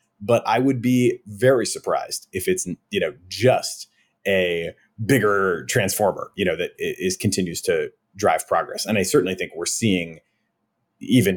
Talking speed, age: 155 wpm, 30-49